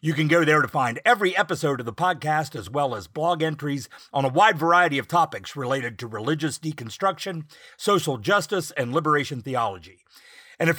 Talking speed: 185 wpm